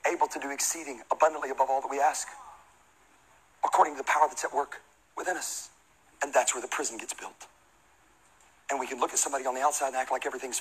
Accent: American